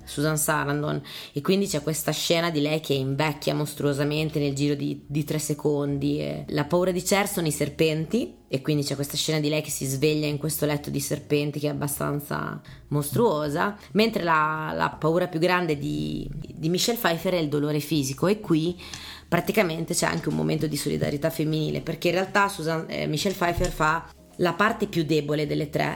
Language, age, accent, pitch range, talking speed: Italian, 30-49, native, 145-175 Hz, 190 wpm